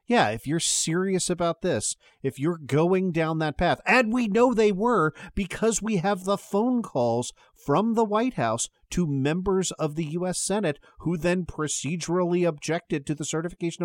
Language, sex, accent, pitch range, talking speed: English, male, American, 120-180 Hz, 175 wpm